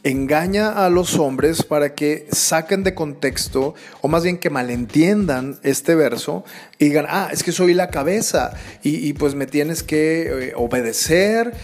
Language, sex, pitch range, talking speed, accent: Spanish, male, 140-180 Hz, 160 wpm, Mexican